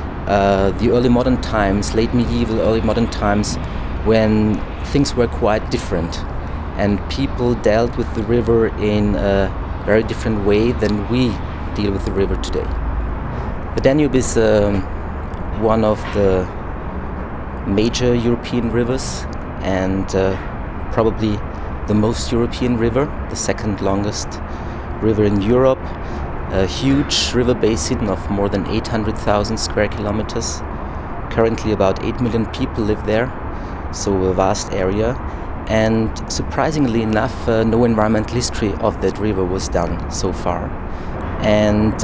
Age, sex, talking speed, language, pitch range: 30-49, male, 130 wpm, English, 85-110 Hz